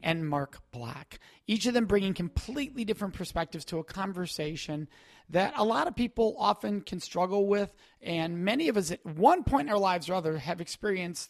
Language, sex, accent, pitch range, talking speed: English, male, American, 160-205 Hz, 190 wpm